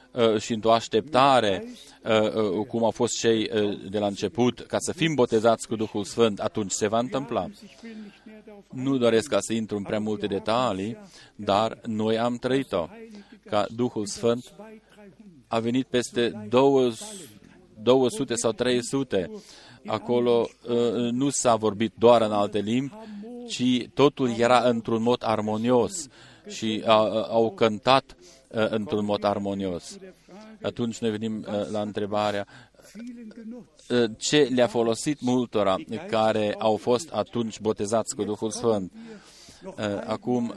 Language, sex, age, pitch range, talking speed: Romanian, male, 40-59, 110-130 Hz, 120 wpm